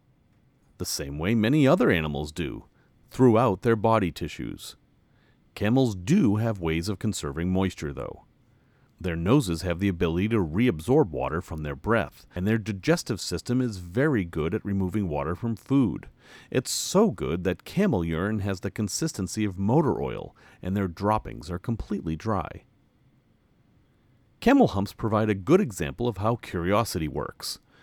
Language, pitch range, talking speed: English, 90-120 Hz, 150 wpm